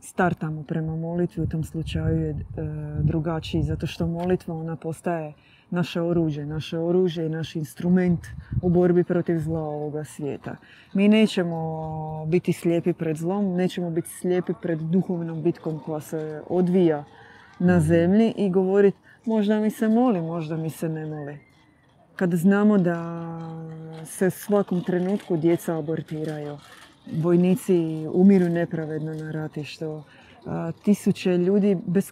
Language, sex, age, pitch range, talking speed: Croatian, female, 20-39, 160-185 Hz, 135 wpm